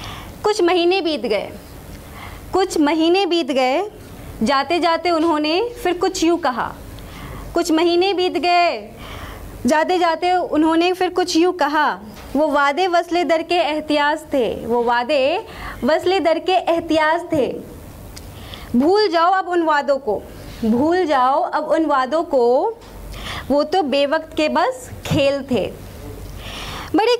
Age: 20-39